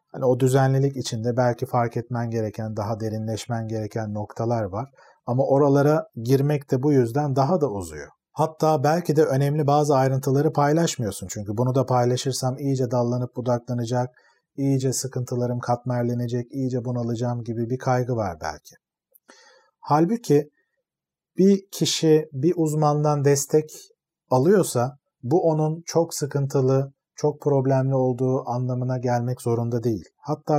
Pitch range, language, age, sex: 125-150 Hz, Turkish, 40-59, male